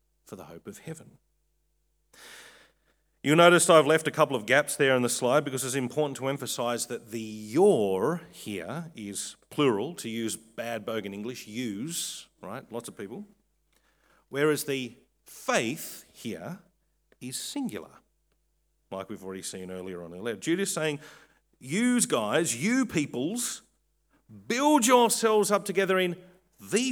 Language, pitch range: English, 110-185 Hz